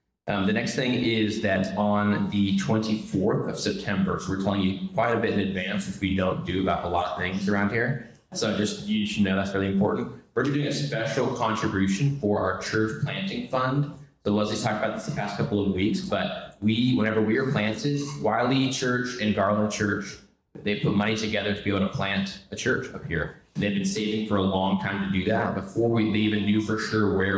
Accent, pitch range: American, 95-110 Hz